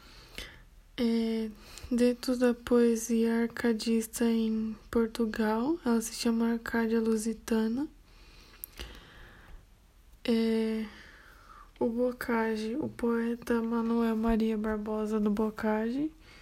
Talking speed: 80 wpm